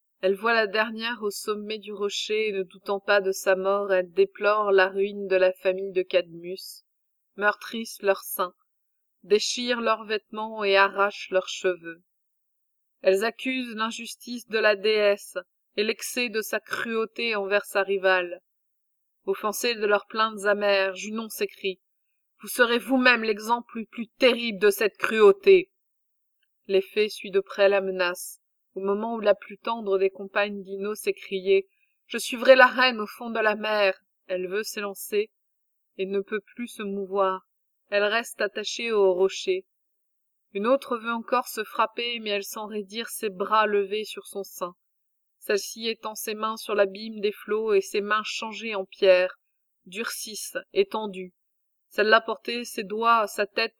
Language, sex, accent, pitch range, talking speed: French, female, French, 195-230 Hz, 160 wpm